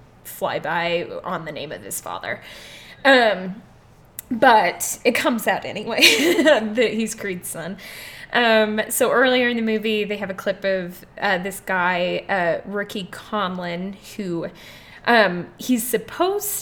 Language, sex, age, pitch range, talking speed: English, female, 10-29, 190-235 Hz, 140 wpm